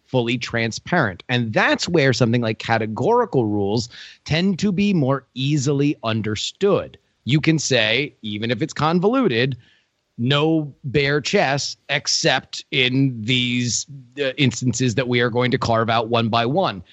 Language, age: English, 30-49